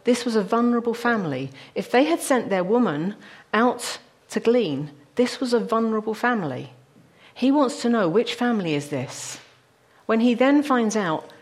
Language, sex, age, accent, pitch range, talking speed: English, female, 40-59, British, 155-235 Hz, 170 wpm